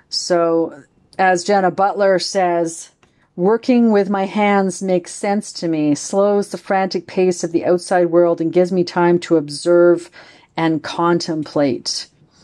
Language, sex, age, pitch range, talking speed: English, female, 40-59, 160-185 Hz, 140 wpm